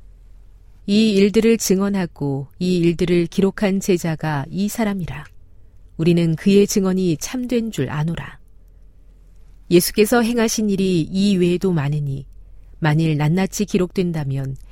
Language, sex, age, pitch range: Korean, female, 40-59, 130-200 Hz